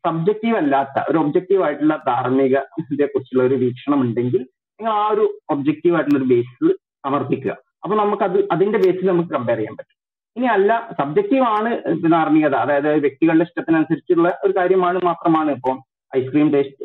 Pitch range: 150-225 Hz